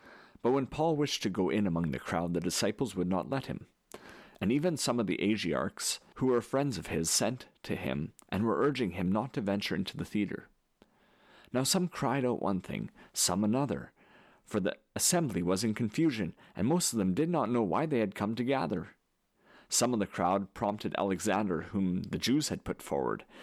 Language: English